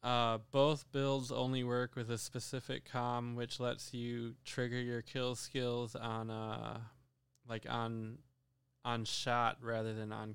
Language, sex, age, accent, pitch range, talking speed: English, male, 20-39, American, 120-130 Hz, 145 wpm